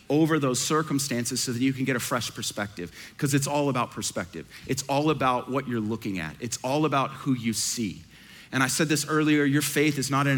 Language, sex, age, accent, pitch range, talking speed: English, male, 40-59, American, 125-150 Hz, 225 wpm